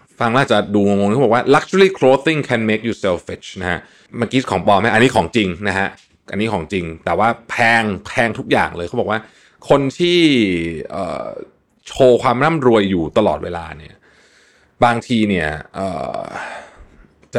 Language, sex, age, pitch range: Thai, male, 20-39, 85-120 Hz